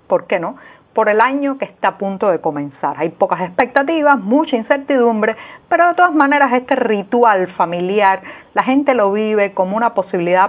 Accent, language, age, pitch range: American, Spanish, 40-59, 180-240 Hz